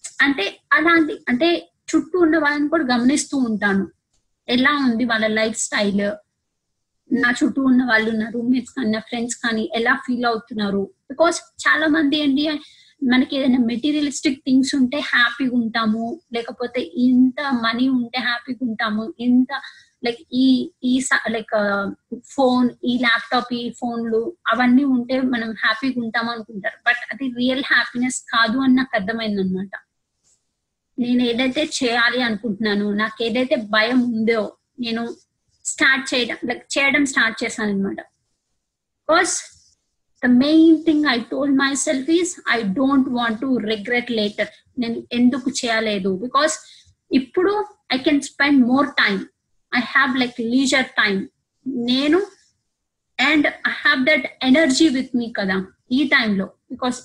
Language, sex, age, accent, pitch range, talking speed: Telugu, female, 20-39, native, 230-275 Hz, 130 wpm